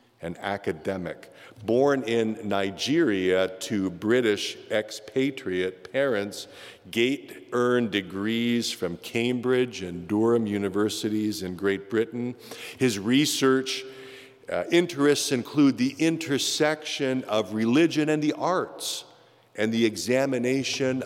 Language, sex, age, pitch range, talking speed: English, male, 50-69, 105-130 Hz, 100 wpm